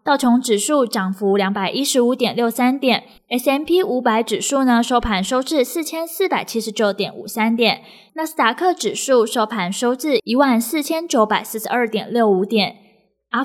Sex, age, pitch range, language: female, 10-29, 215-275 Hz, Chinese